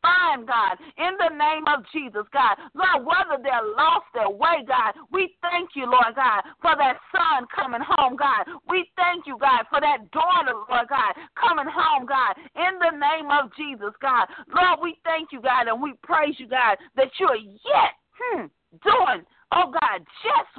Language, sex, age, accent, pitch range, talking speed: English, female, 40-59, American, 260-345 Hz, 185 wpm